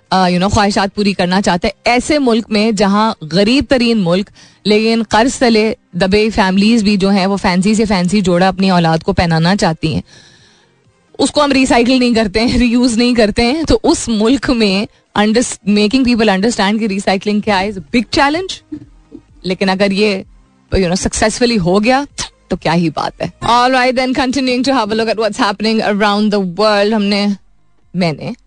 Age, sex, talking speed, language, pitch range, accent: 20-39, female, 125 wpm, Hindi, 190-245 Hz, native